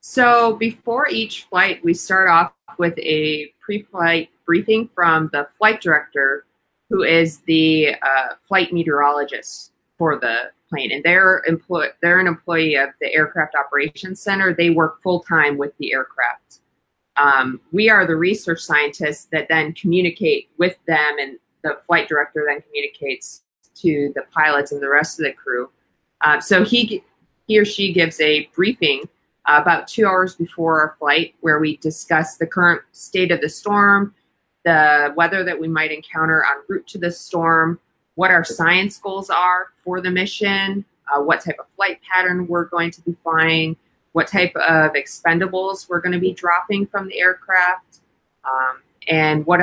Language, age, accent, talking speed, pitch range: English, 30-49, American, 165 wpm, 155-185 Hz